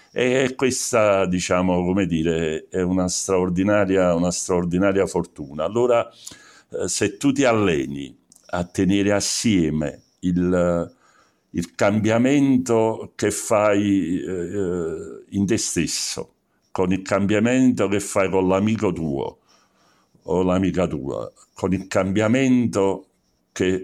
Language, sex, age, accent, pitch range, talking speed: Italian, male, 60-79, native, 85-105 Hz, 110 wpm